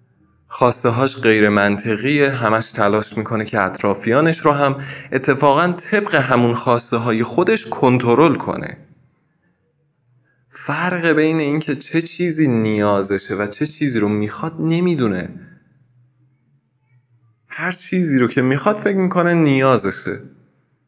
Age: 20-39